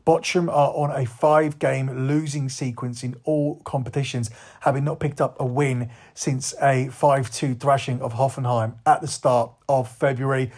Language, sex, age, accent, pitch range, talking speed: English, male, 30-49, British, 120-145 Hz, 155 wpm